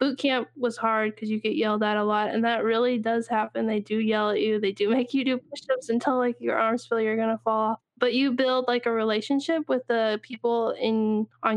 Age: 10-29